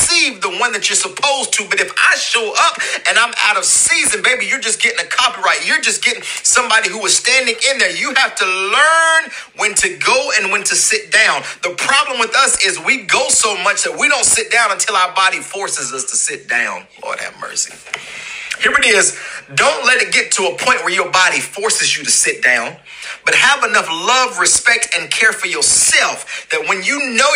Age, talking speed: 40-59, 215 wpm